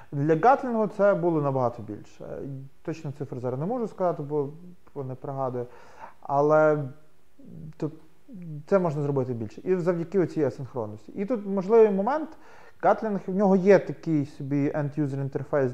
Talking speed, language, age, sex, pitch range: 135 wpm, Ukrainian, 30-49, male, 135-185 Hz